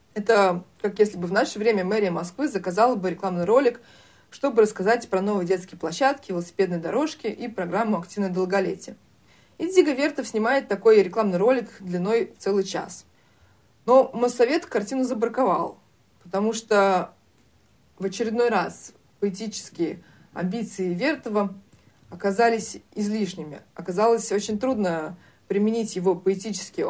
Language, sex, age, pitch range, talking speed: Russian, female, 30-49, 185-225 Hz, 125 wpm